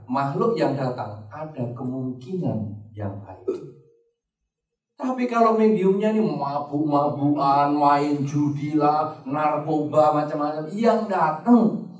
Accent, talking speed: Indonesian, 95 wpm